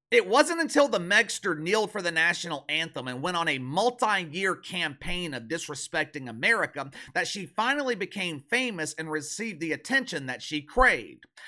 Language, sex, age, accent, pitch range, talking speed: English, male, 40-59, American, 140-185 Hz, 160 wpm